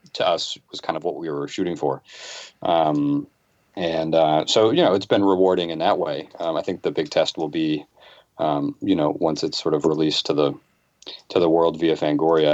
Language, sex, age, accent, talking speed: English, male, 30-49, American, 215 wpm